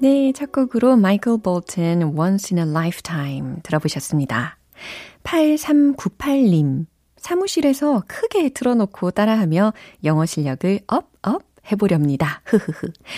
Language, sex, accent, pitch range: Korean, female, native, 150-225 Hz